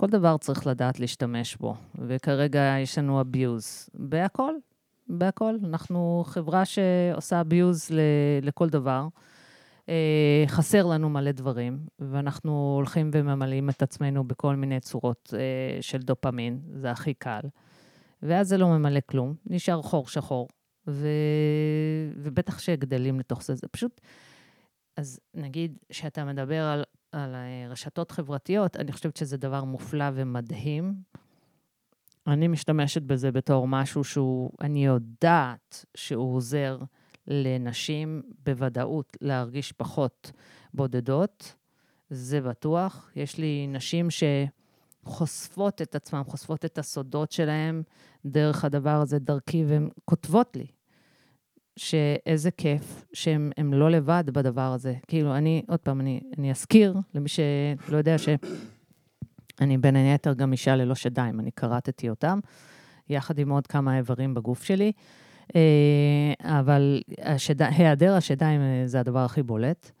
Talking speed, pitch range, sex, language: 125 wpm, 135-160 Hz, female, Hebrew